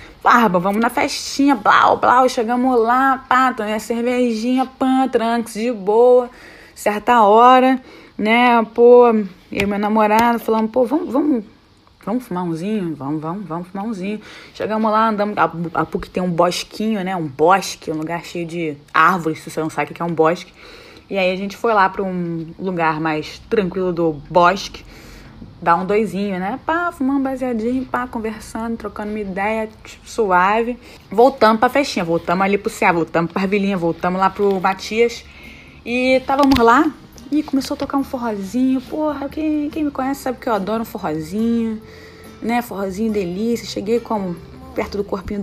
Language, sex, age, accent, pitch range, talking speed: Portuguese, female, 20-39, Brazilian, 185-245 Hz, 170 wpm